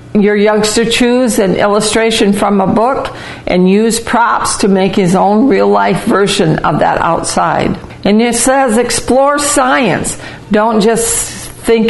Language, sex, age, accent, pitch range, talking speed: English, female, 60-79, American, 195-245 Hz, 140 wpm